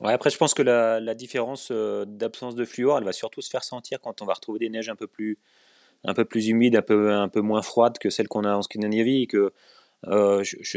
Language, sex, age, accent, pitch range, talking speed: French, male, 20-39, French, 100-120 Hz, 255 wpm